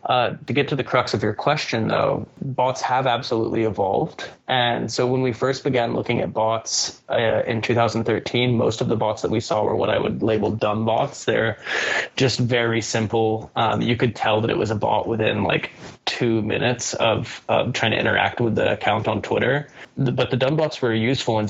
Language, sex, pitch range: English, male, 110-125 Hz